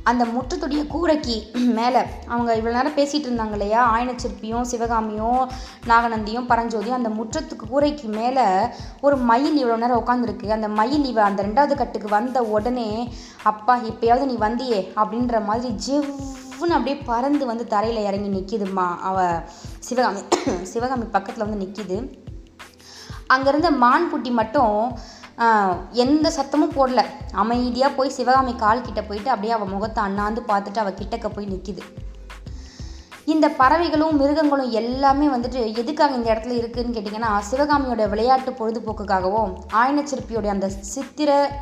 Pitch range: 215-260 Hz